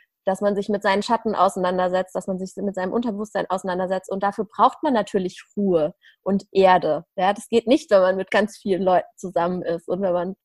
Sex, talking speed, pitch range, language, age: female, 215 wpm, 190-230 Hz, German, 20-39